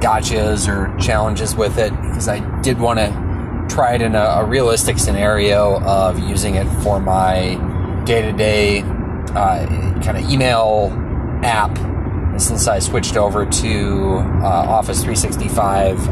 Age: 30-49